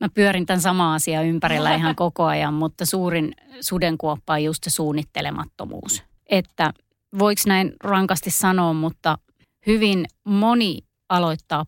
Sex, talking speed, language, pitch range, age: female, 130 wpm, Finnish, 155-190 Hz, 30-49